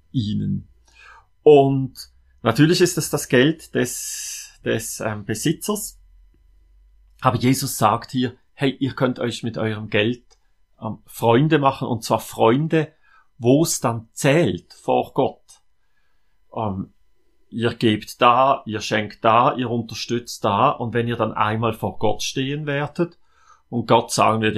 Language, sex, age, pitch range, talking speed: German, male, 30-49, 110-145 Hz, 140 wpm